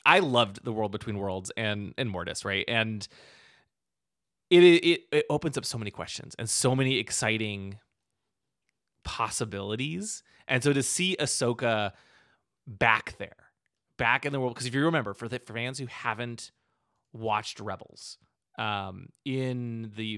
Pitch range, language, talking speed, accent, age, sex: 105-130 Hz, English, 145 wpm, American, 30-49, male